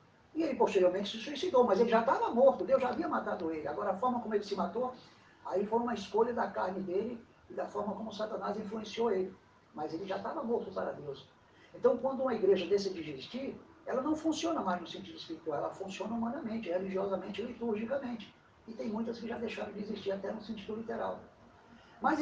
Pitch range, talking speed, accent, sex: 195-245 Hz, 205 wpm, Brazilian, male